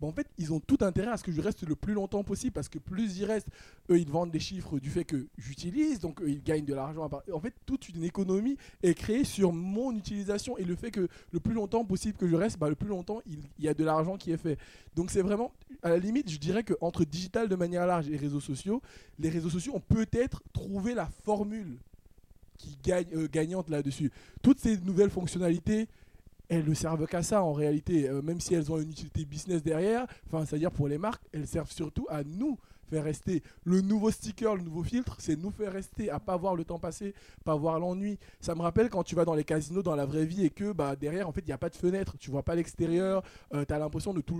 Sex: male